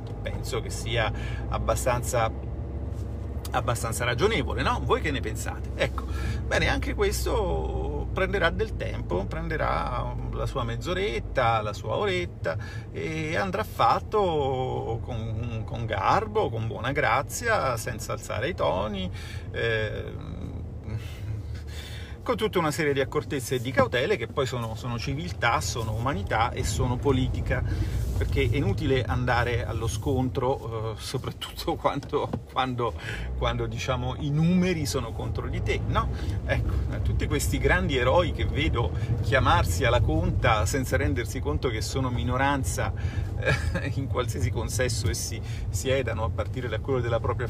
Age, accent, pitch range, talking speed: 40-59, native, 100-120 Hz, 130 wpm